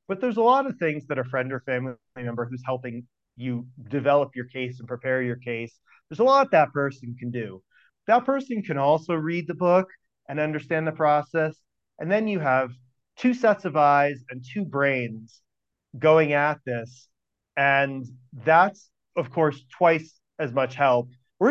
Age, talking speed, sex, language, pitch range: 30-49, 175 wpm, male, English, 125-170 Hz